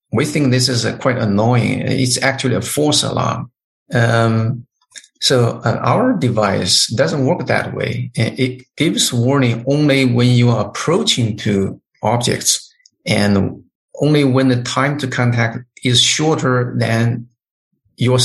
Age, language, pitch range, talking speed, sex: 50-69, English, 115-130 Hz, 130 wpm, male